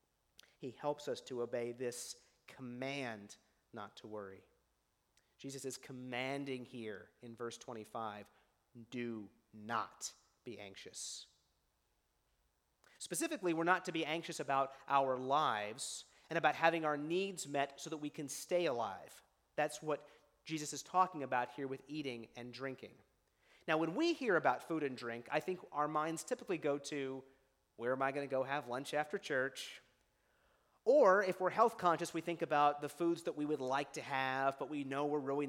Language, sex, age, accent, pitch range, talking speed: English, male, 40-59, American, 120-165 Hz, 165 wpm